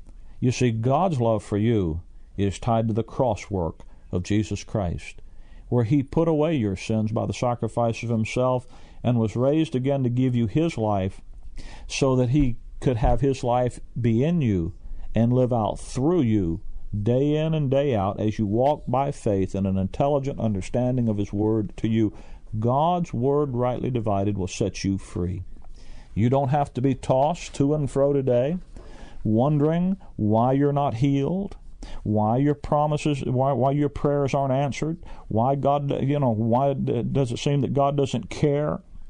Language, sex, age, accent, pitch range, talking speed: English, male, 50-69, American, 105-140 Hz, 175 wpm